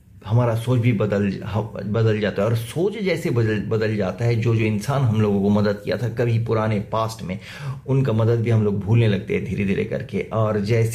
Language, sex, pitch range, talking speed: English, male, 105-125 Hz, 215 wpm